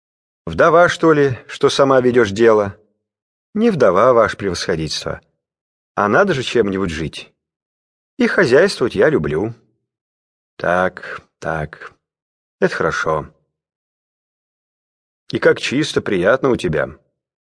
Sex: male